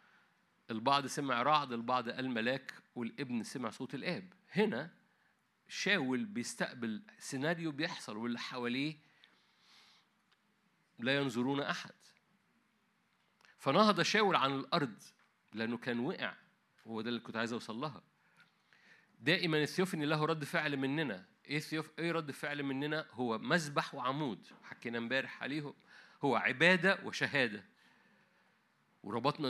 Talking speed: 115 wpm